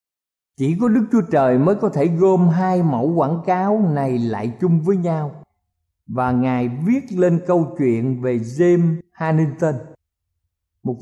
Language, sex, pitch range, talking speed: Vietnamese, male, 125-185 Hz, 150 wpm